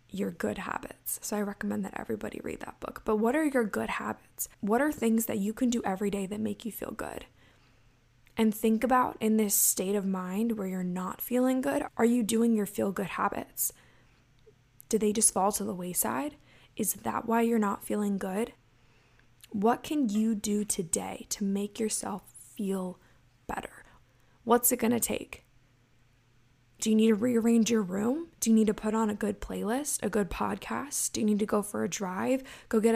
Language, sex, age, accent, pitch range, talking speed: English, female, 10-29, American, 195-240 Hz, 195 wpm